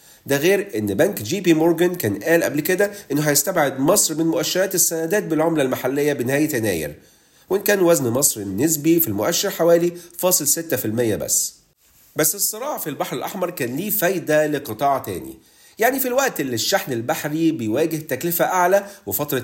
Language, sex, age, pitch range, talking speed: Arabic, male, 40-59, 145-180 Hz, 155 wpm